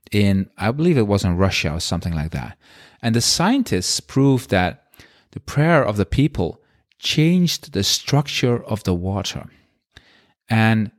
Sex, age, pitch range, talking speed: male, 30-49, 95-130 Hz, 155 wpm